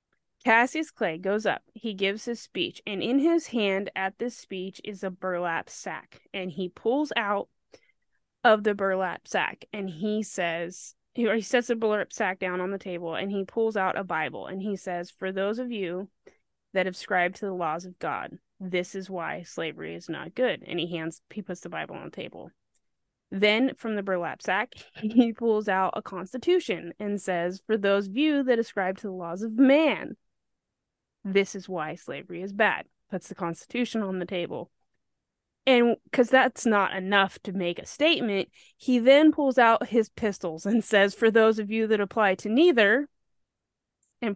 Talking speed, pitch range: 185 wpm, 185-230 Hz